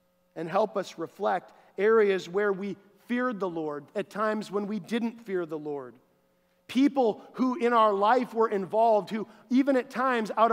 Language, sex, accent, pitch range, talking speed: English, male, American, 195-245 Hz, 170 wpm